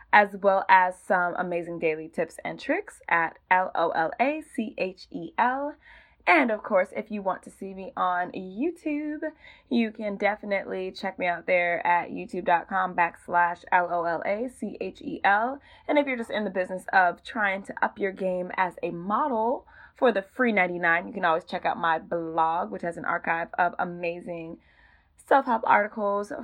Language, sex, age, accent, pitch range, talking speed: English, female, 20-39, American, 175-245 Hz, 155 wpm